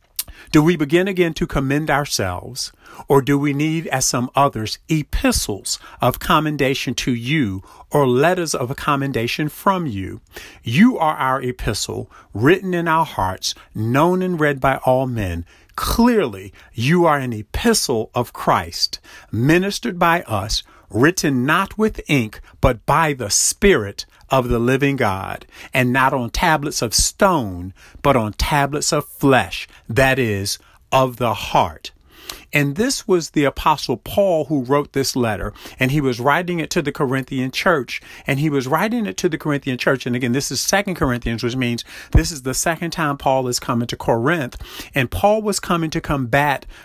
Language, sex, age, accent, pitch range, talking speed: English, male, 50-69, American, 120-160 Hz, 165 wpm